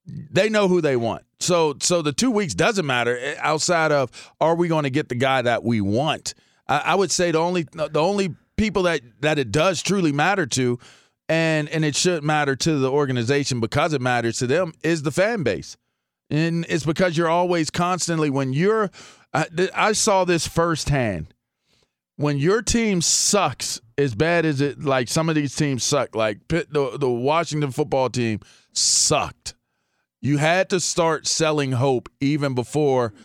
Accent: American